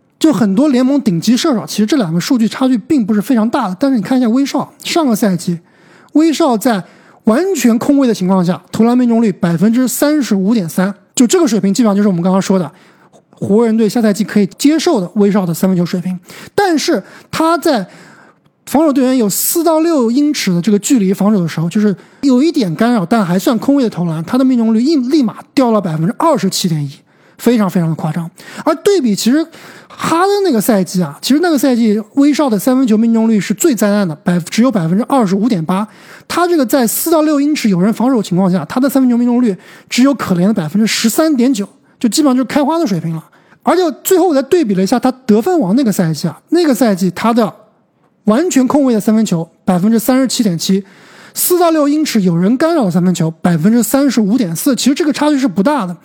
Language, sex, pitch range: Chinese, male, 195-280 Hz